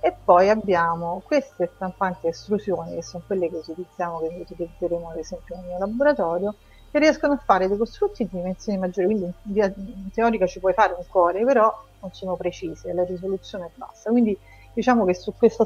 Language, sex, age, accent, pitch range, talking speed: Italian, female, 30-49, native, 175-220 Hz, 195 wpm